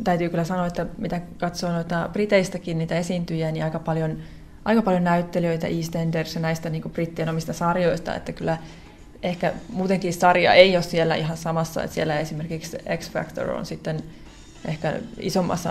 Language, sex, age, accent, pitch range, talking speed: Finnish, female, 20-39, native, 170-200 Hz, 160 wpm